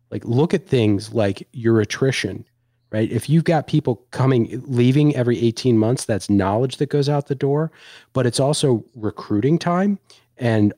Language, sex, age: English, male, 40-59